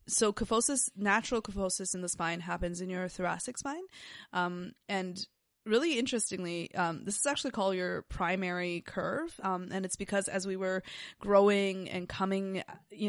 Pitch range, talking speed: 175-200 Hz, 160 wpm